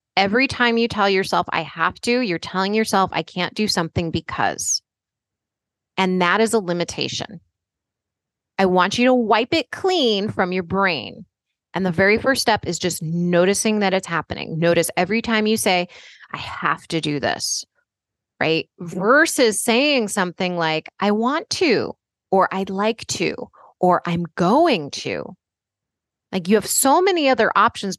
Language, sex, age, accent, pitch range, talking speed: English, female, 20-39, American, 180-240 Hz, 160 wpm